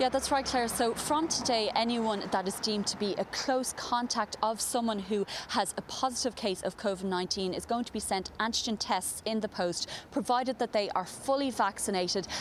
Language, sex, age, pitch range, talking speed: English, female, 30-49, 195-235 Hz, 200 wpm